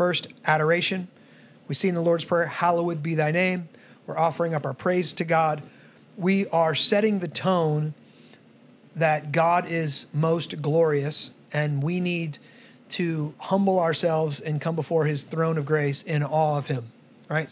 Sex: male